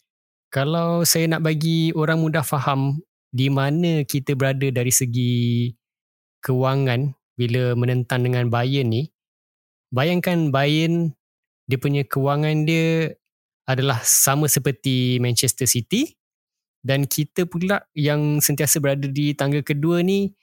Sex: male